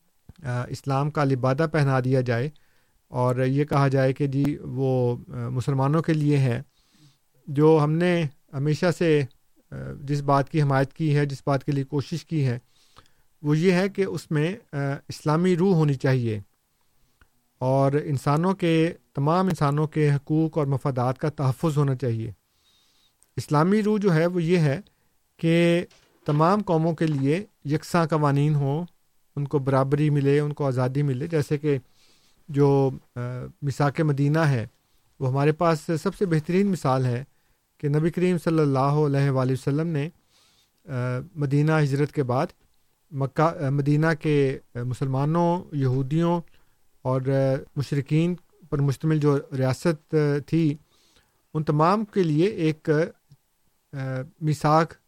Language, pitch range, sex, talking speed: Urdu, 135-160 Hz, male, 140 wpm